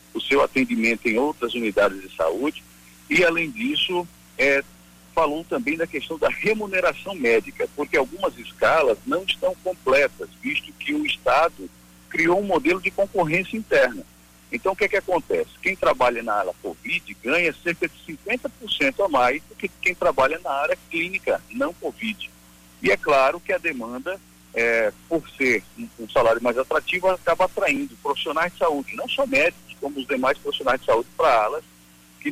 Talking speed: 160 wpm